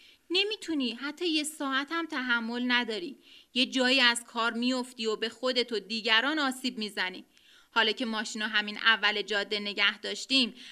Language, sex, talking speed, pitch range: Persian, female, 150 wpm, 220-285 Hz